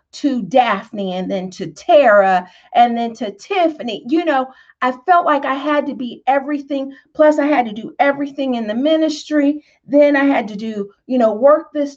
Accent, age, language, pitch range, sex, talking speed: American, 40-59, English, 230-310 Hz, female, 190 wpm